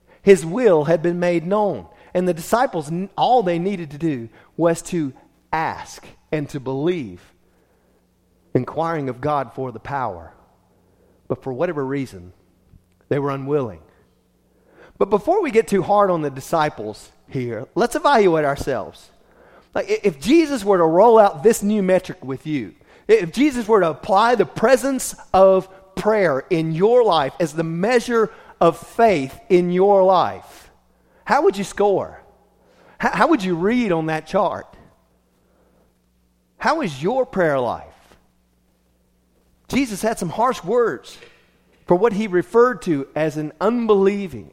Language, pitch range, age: English, 135-205 Hz, 40-59